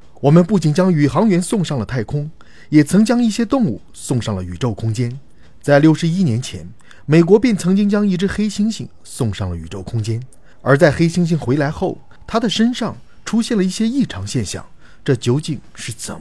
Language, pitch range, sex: Chinese, 115-190 Hz, male